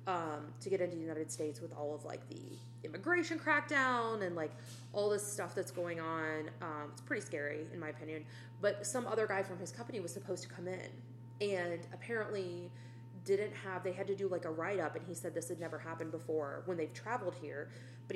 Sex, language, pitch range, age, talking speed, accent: female, English, 125-185 Hz, 20-39, 220 wpm, American